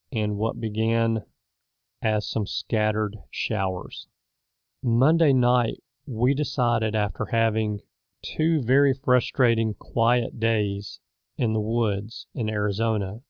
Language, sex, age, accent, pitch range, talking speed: English, male, 40-59, American, 110-125 Hz, 105 wpm